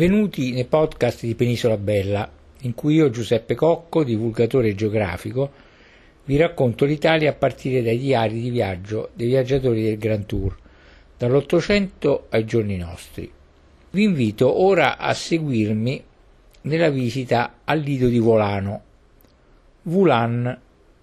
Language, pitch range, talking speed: Italian, 110-150 Hz, 125 wpm